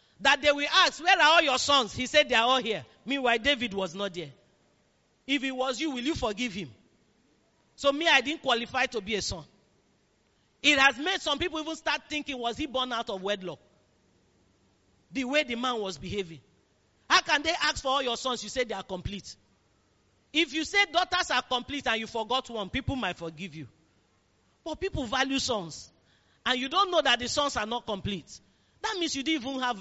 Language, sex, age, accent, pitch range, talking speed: English, male, 40-59, Nigerian, 195-300 Hz, 210 wpm